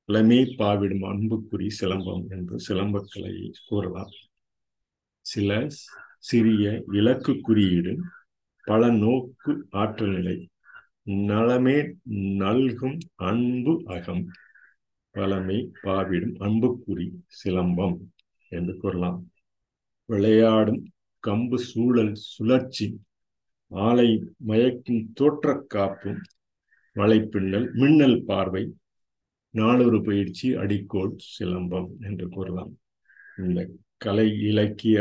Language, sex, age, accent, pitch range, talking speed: Tamil, male, 50-69, native, 95-115 Hz, 70 wpm